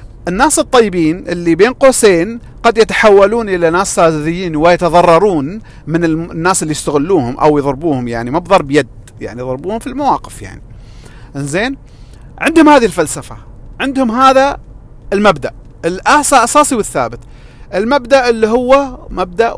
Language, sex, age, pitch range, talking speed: Arabic, male, 40-59, 140-235 Hz, 120 wpm